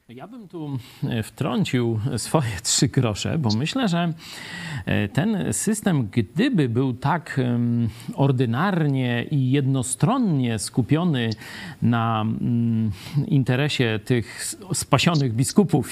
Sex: male